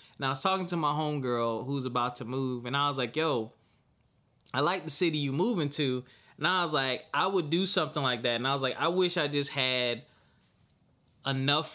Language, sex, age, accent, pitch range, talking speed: English, male, 20-39, American, 115-145 Hz, 220 wpm